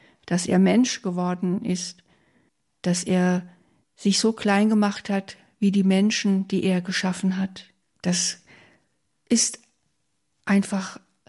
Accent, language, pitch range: German, German, 185-210 Hz